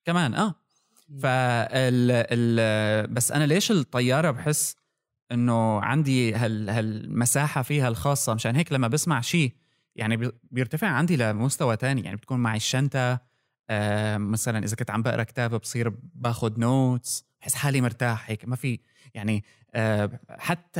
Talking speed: 140 wpm